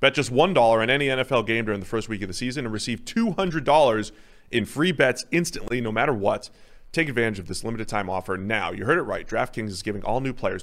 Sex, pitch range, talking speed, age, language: male, 110-135 Hz, 230 wpm, 30-49, English